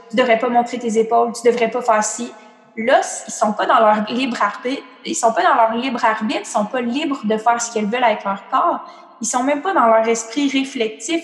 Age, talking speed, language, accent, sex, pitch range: 20-39, 245 wpm, French, Canadian, female, 215-255 Hz